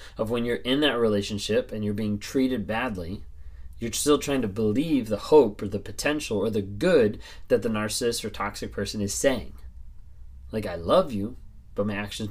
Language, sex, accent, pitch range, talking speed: English, male, American, 95-130 Hz, 190 wpm